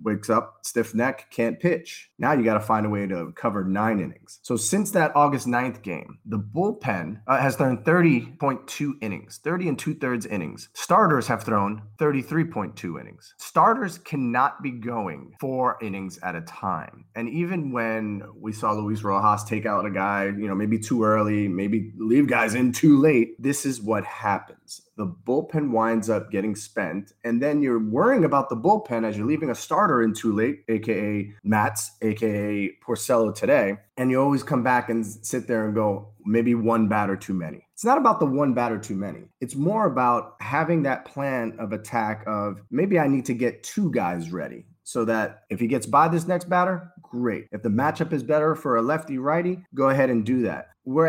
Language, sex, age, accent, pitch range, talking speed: English, male, 30-49, American, 105-145 Hz, 195 wpm